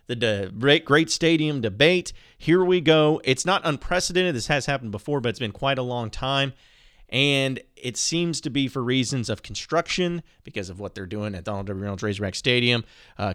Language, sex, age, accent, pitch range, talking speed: English, male, 30-49, American, 110-140 Hz, 195 wpm